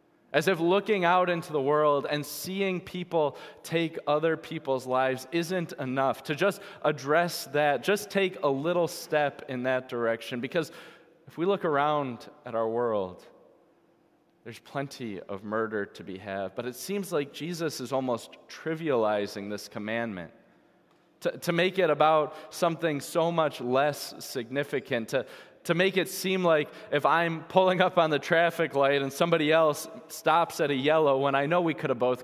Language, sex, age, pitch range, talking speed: English, male, 20-39, 135-175 Hz, 170 wpm